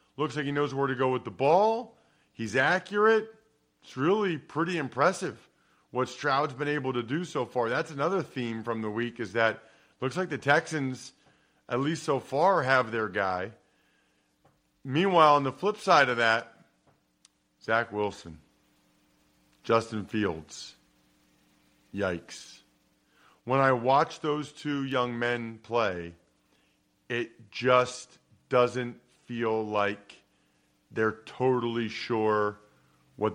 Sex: male